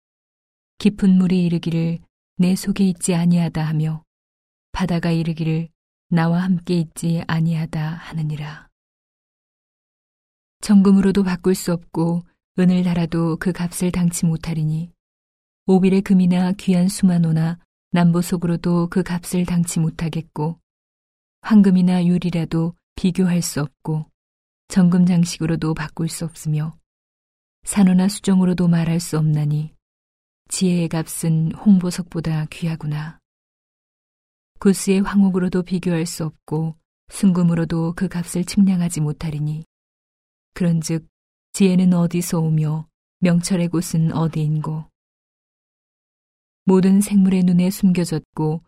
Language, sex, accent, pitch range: Korean, female, native, 155-180 Hz